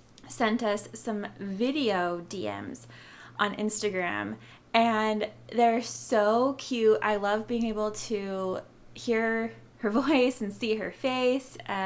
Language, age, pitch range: English, 20-39, 185-225 Hz